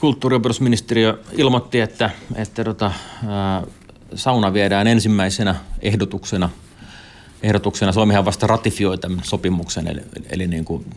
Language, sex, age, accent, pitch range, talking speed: Finnish, male, 30-49, native, 85-100 Hz, 110 wpm